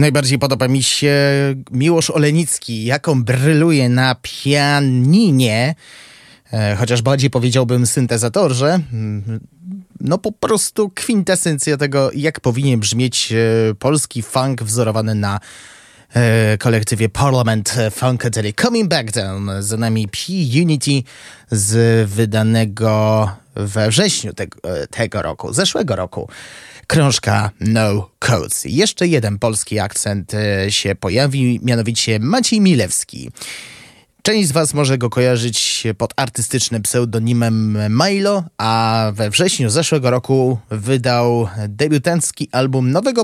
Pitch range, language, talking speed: 110-150 Hz, Polish, 105 wpm